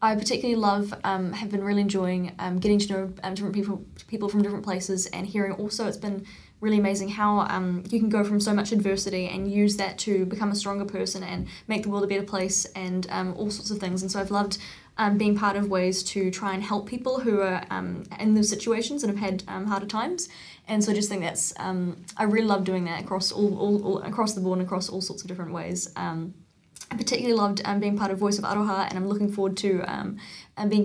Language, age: English, 10-29